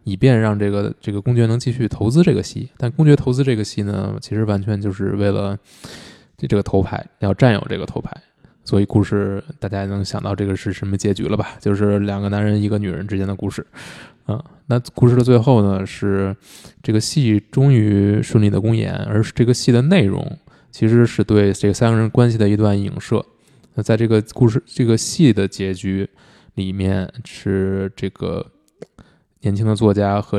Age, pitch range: 20-39, 100-120 Hz